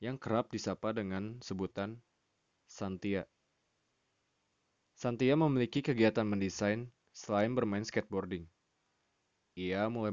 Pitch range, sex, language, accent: 100-125 Hz, male, Indonesian, native